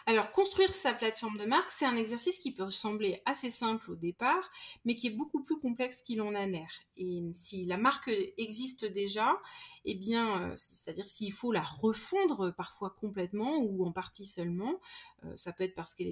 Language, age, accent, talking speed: French, 30-49, French, 185 wpm